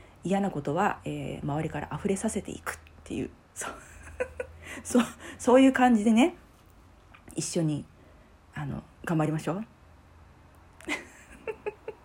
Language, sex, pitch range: Japanese, female, 150-205 Hz